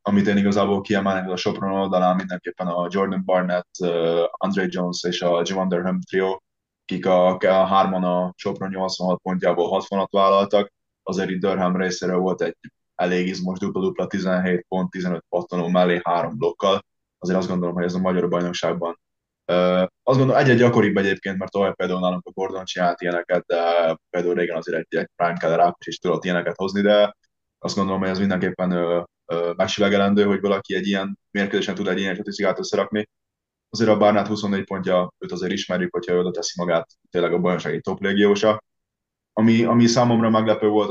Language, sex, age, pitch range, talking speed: Hungarian, male, 20-39, 90-100 Hz, 175 wpm